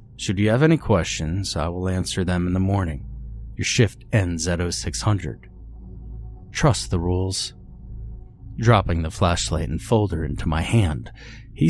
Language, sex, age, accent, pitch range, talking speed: English, male, 30-49, American, 90-115 Hz, 150 wpm